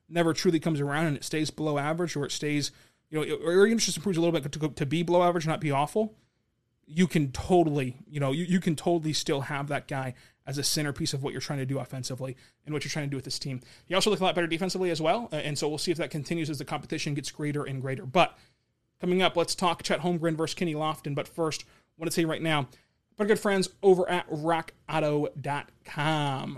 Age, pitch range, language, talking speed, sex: 30-49, 140-175 Hz, English, 250 wpm, male